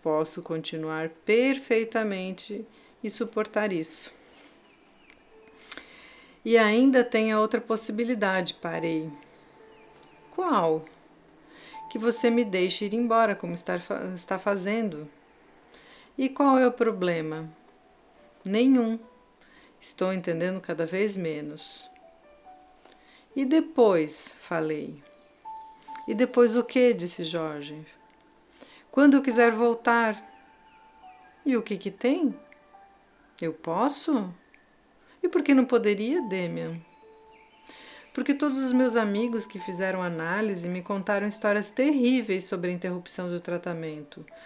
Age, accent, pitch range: 40-59, Brazilian, 175-240 Hz